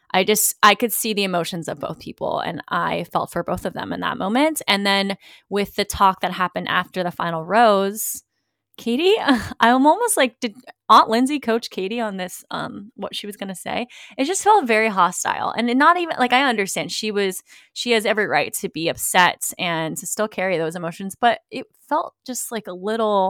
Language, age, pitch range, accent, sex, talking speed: English, 20-39, 180-235 Hz, American, female, 210 wpm